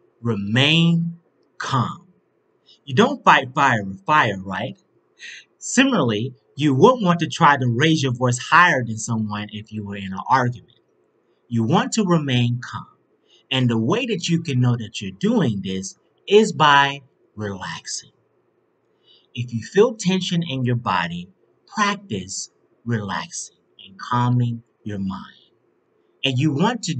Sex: male